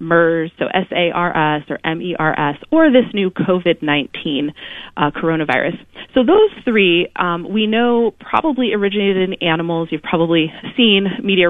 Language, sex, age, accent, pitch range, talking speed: English, female, 30-49, American, 160-220 Hz, 130 wpm